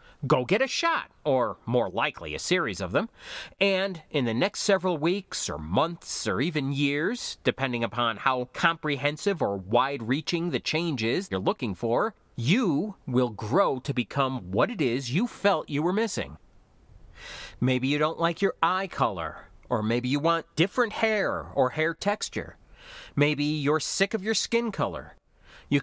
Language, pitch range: English, 125-190 Hz